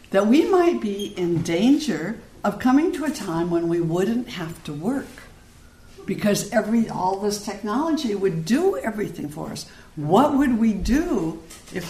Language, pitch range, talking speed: English, 180-250 Hz, 160 wpm